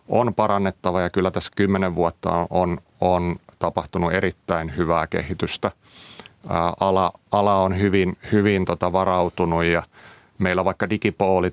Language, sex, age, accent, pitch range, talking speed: Finnish, male, 30-49, native, 85-95 Hz, 130 wpm